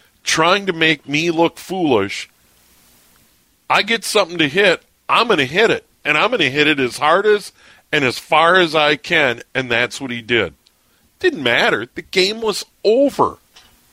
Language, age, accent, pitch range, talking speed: English, 40-59, American, 135-195 Hz, 170 wpm